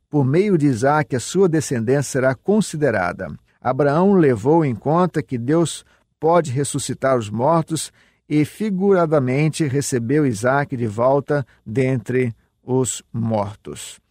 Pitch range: 130-155 Hz